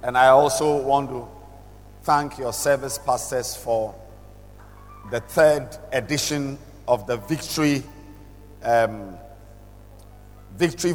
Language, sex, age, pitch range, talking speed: English, male, 50-69, 100-135 Hz, 100 wpm